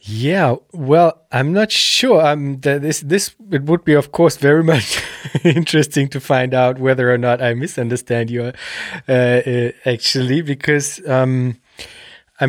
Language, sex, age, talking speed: German, male, 20-39, 145 wpm